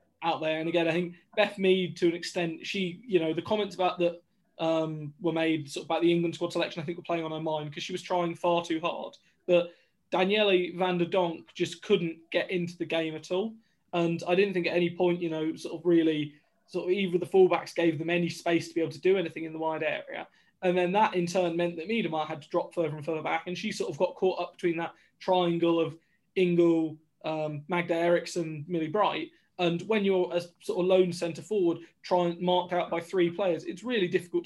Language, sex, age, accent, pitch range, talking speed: English, male, 20-39, British, 165-185 Hz, 240 wpm